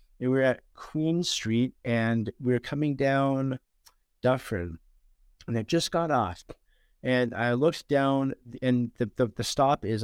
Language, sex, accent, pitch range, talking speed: English, male, American, 105-125 Hz, 160 wpm